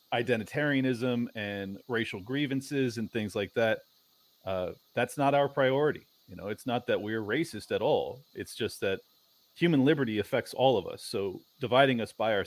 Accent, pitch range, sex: American, 100-120 Hz, male